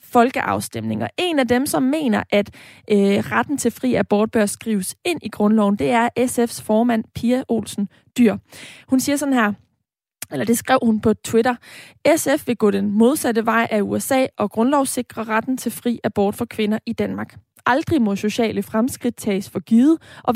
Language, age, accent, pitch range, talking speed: Danish, 20-39, native, 215-255 Hz, 175 wpm